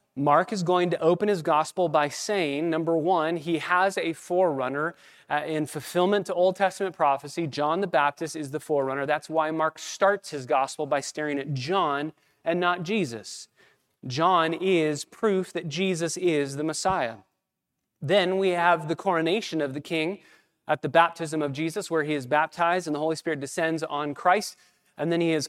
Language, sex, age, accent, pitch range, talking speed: English, male, 30-49, American, 150-185 Hz, 180 wpm